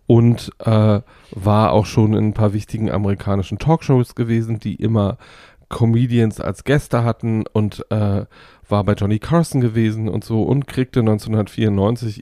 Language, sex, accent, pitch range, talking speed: German, male, German, 105-125 Hz, 145 wpm